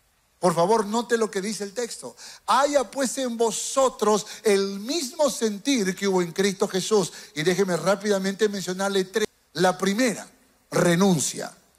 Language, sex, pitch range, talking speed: Spanish, male, 185-230 Hz, 145 wpm